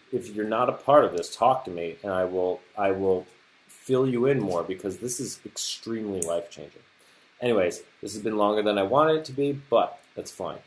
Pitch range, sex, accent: 105-150 Hz, male, American